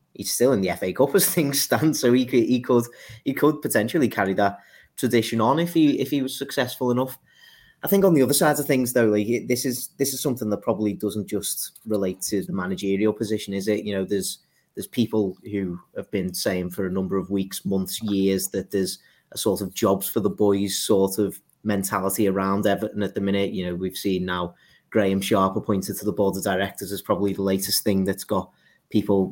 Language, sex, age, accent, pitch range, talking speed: English, male, 30-49, British, 100-120 Hz, 220 wpm